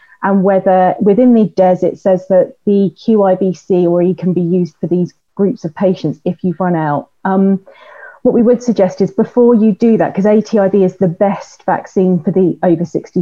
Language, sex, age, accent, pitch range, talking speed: English, female, 30-49, British, 180-205 Hz, 195 wpm